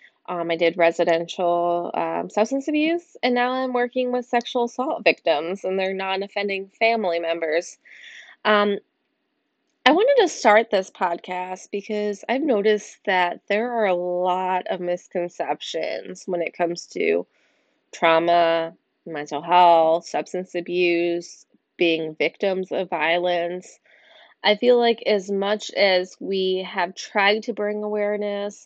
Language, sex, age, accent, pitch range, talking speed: English, female, 20-39, American, 170-210 Hz, 130 wpm